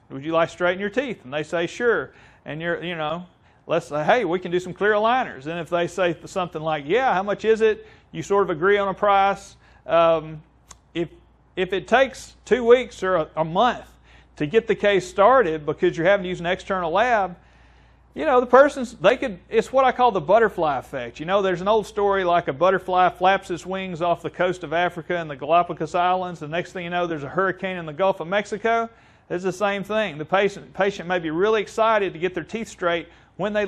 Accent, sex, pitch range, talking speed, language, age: American, male, 170-210 Hz, 235 wpm, English, 40-59